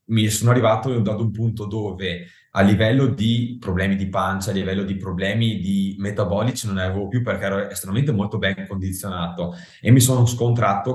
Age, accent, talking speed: 20-39, native, 180 wpm